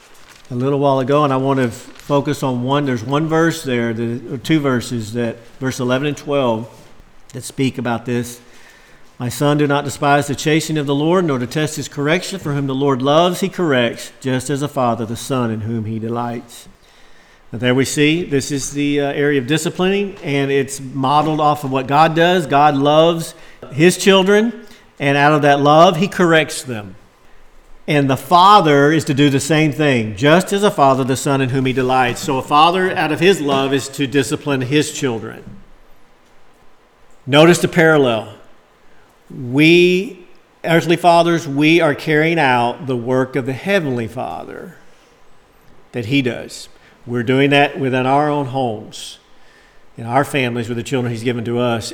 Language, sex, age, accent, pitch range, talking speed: English, male, 50-69, American, 125-155 Hz, 180 wpm